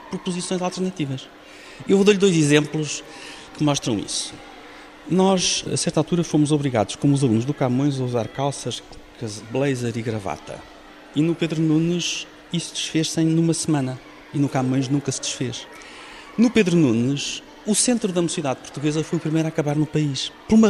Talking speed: 170 wpm